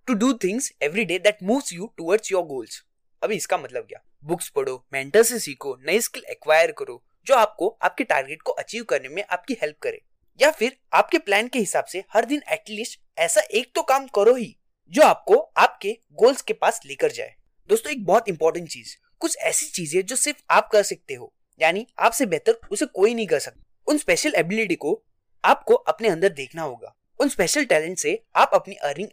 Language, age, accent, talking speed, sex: Hindi, 20-39, native, 170 wpm, male